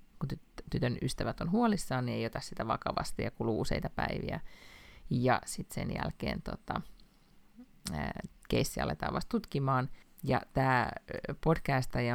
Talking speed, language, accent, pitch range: 140 wpm, Finnish, native, 125-170 Hz